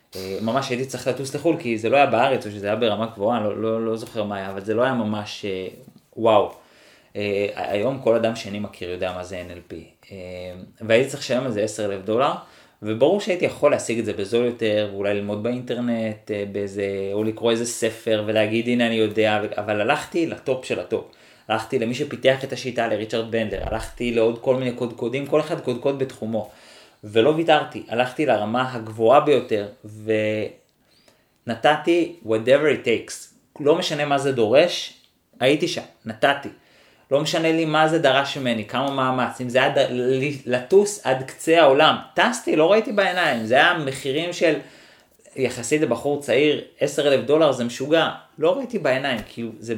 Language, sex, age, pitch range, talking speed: Hebrew, male, 20-39, 105-135 Hz, 170 wpm